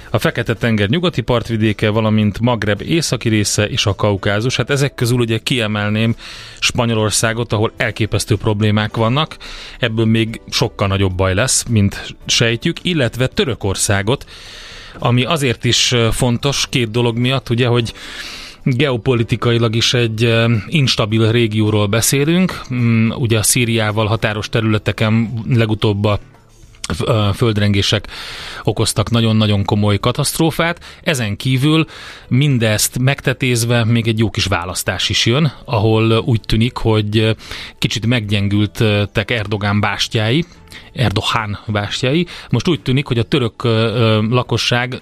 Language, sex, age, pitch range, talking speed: Hungarian, male, 30-49, 105-125 Hz, 115 wpm